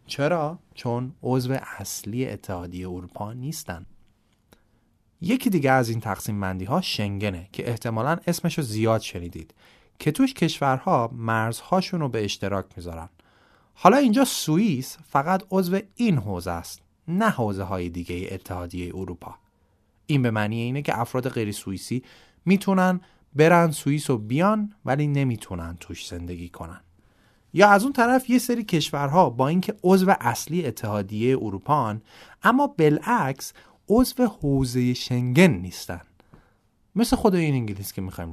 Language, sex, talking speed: Persian, male, 135 wpm